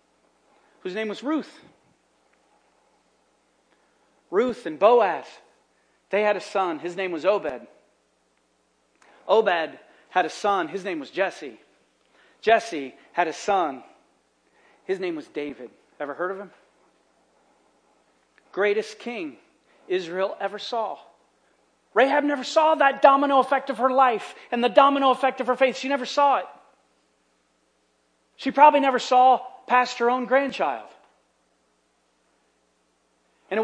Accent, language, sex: American, English, male